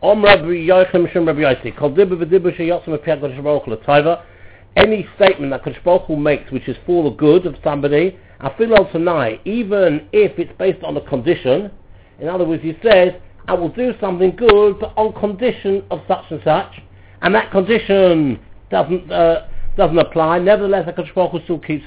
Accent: British